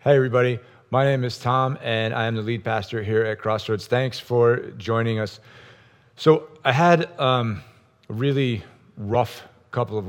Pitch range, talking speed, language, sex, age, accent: 110-125 Hz, 165 wpm, English, male, 40-59, American